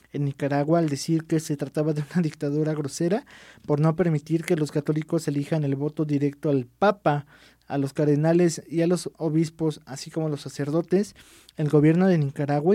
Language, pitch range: Spanish, 145-160 Hz